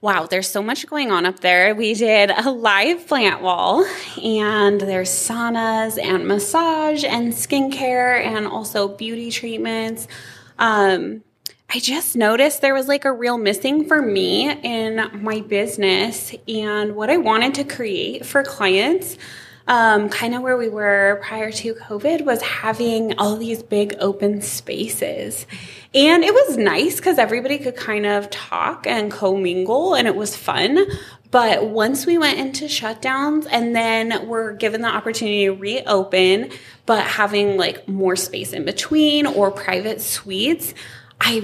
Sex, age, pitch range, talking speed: female, 20-39, 200-250 Hz, 150 wpm